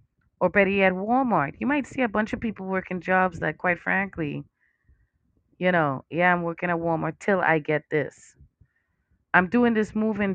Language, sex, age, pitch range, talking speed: English, female, 30-49, 165-205 Hz, 180 wpm